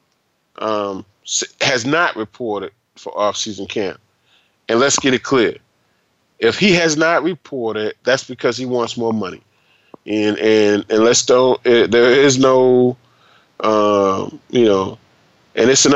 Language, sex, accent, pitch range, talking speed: English, male, American, 105-140 Hz, 145 wpm